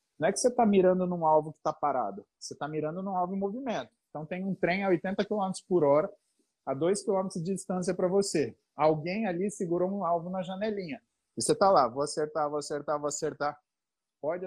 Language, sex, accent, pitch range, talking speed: Portuguese, male, Brazilian, 150-195 Hz, 215 wpm